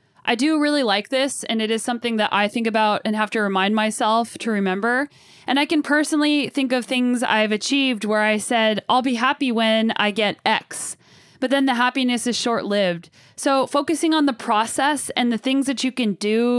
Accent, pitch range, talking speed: American, 215-270 Hz, 205 wpm